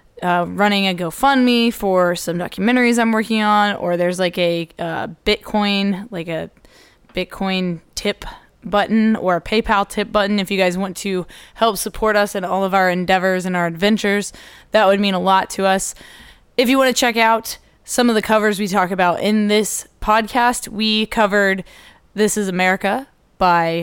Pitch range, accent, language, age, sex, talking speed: 185-220 Hz, American, English, 20-39, female, 170 wpm